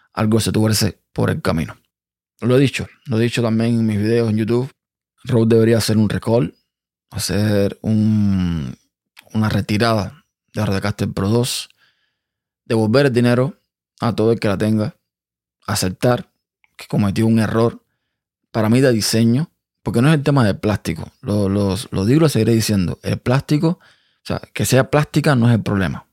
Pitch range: 105-120 Hz